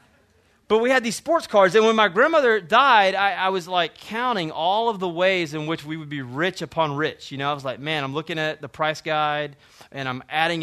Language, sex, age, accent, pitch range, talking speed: English, male, 30-49, American, 155-225 Hz, 245 wpm